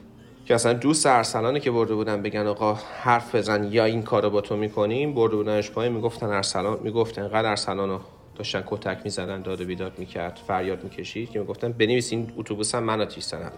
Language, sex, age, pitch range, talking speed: English, male, 40-59, 105-120 Hz, 185 wpm